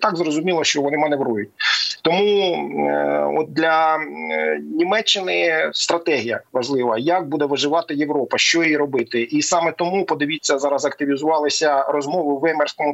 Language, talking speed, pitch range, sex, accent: Ukrainian, 130 wpm, 140-165 Hz, male, native